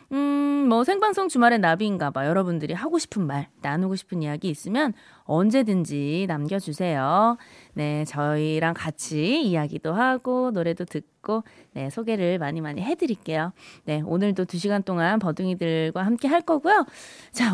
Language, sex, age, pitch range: Korean, female, 20-39, 170-265 Hz